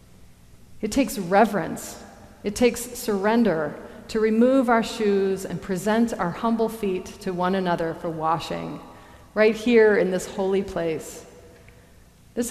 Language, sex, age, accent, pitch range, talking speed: English, female, 40-59, American, 175-230 Hz, 130 wpm